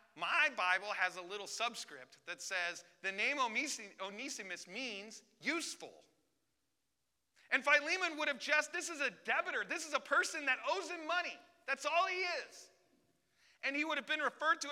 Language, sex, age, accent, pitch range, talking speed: English, male, 30-49, American, 210-300 Hz, 165 wpm